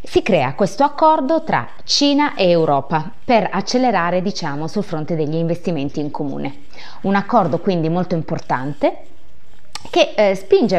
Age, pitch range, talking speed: 20-39, 155-200 Hz, 140 wpm